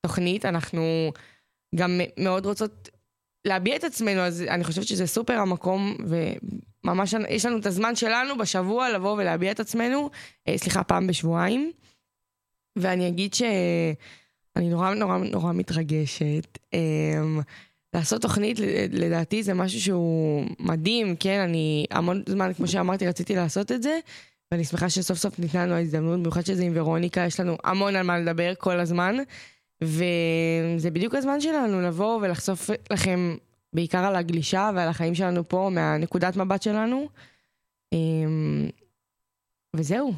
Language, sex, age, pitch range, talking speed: Hebrew, female, 20-39, 165-205 Hz, 135 wpm